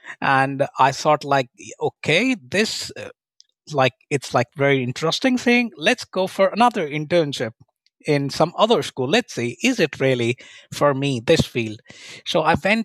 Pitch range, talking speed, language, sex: 135-180 Hz, 155 wpm, Finnish, male